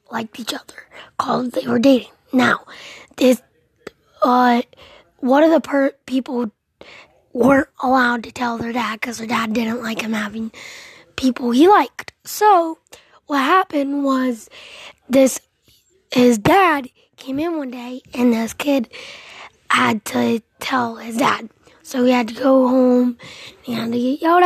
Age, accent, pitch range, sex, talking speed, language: 10-29, American, 245-290 Hz, female, 145 wpm, English